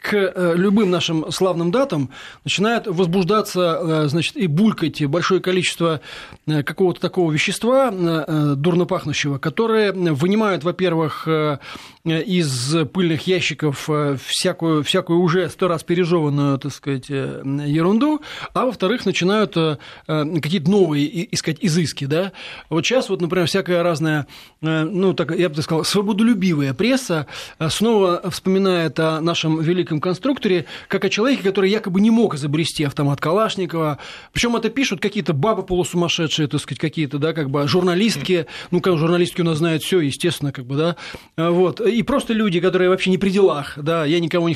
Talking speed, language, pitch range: 140 wpm, Russian, 155-190 Hz